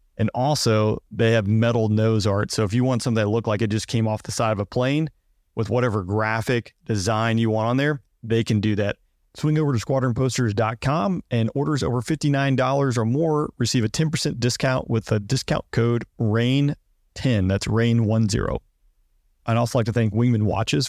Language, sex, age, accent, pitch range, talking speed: English, male, 30-49, American, 105-125 Hz, 185 wpm